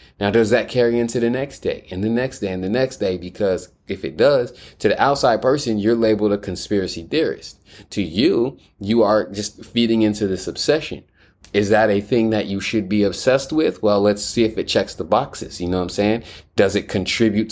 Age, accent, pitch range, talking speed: 30-49, American, 95-115 Hz, 220 wpm